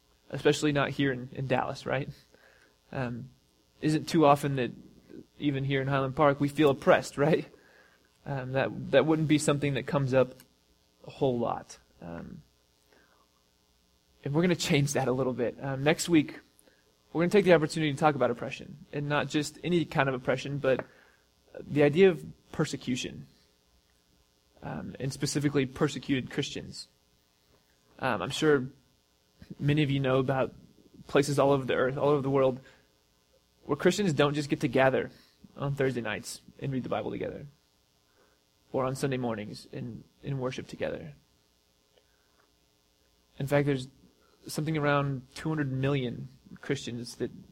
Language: English